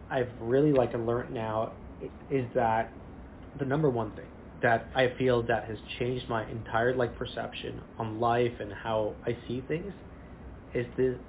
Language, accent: English, American